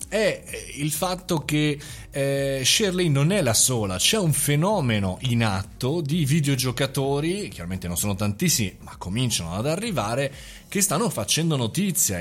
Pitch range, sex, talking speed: 110-155 Hz, male, 145 wpm